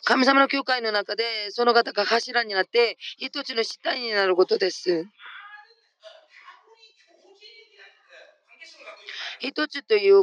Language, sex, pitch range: Japanese, female, 215-315 Hz